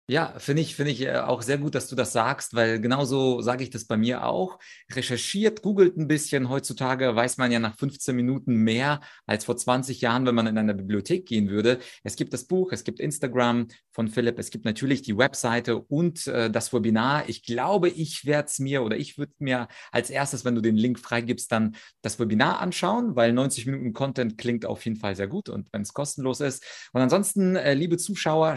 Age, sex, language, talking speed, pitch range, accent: 30-49, male, German, 215 wpm, 120-150 Hz, German